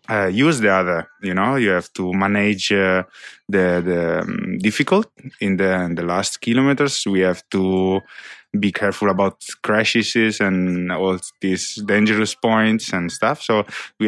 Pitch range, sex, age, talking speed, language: 95-110 Hz, male, 20-39, 160 wpm, English